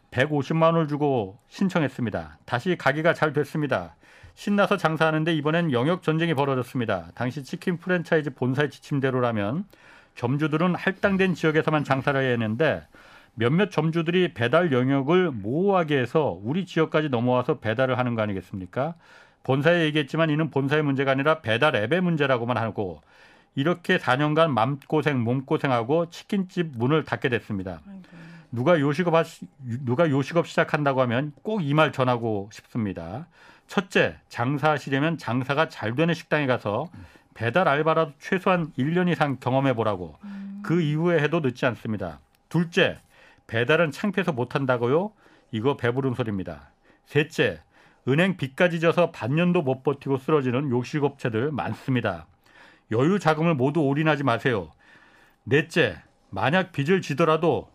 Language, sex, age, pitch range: Korean, male, 40-59, 125-165 Hz